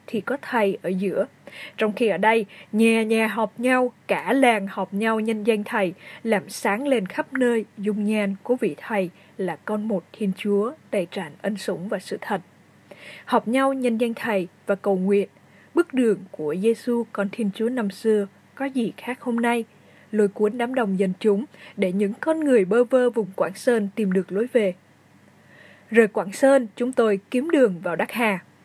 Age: 20-39